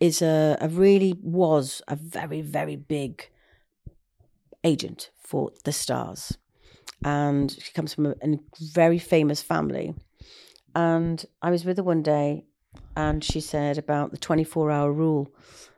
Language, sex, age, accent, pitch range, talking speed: English, female, 40-59, British, 135-155 Hz, 135 wpm